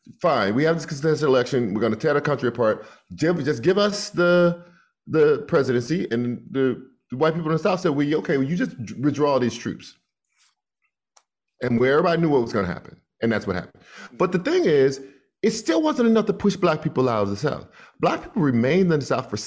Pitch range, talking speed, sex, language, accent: 125-180 Hz, 225 wpm, male, English, American